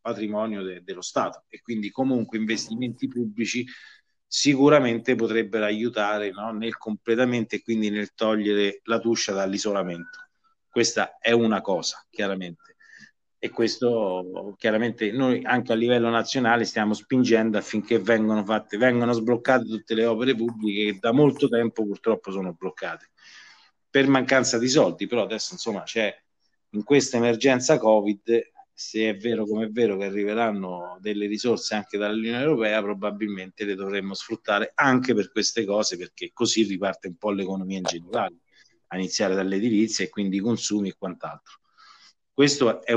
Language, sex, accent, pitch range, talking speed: Italian, male, native, 105-125 Hz, 145 wpm